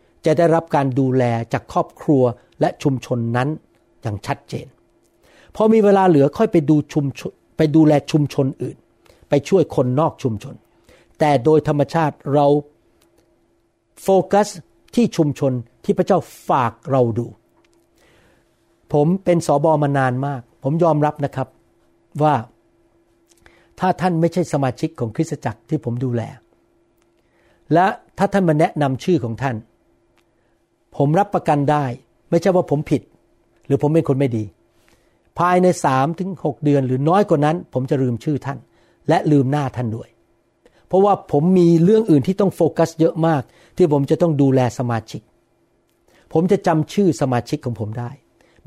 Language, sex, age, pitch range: Thai, male, 60-79, 130-165 Hz